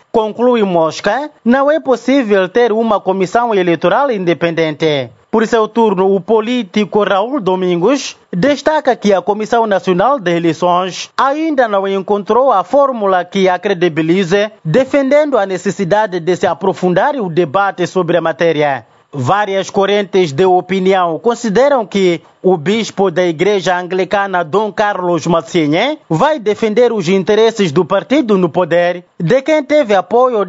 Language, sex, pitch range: Portuguese, male, 180-230 Hz